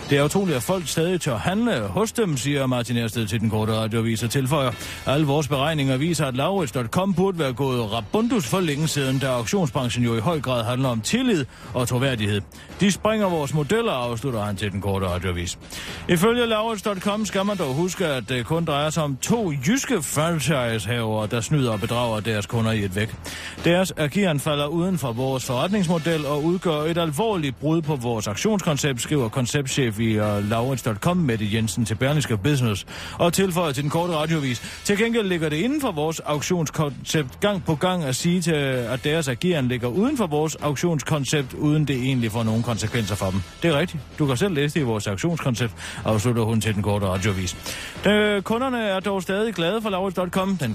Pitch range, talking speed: 120-175 Hz, 195 wpm